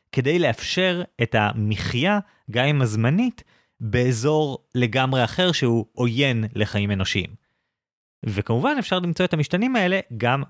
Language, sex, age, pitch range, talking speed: Hebrew, male, 30-49, 105-145 Hz, 120 wpm